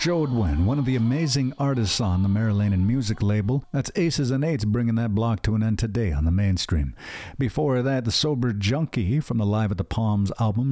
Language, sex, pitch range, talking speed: English, male, 100-135 Hz, 215 wpm